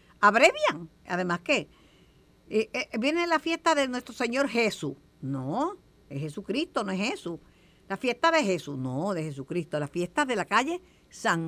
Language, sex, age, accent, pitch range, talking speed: Spanish, female, 50-69, American, 170-225 Hz, 150 wpm